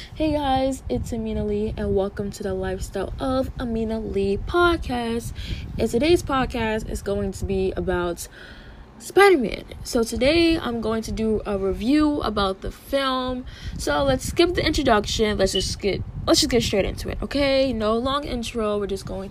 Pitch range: 180-255 Hz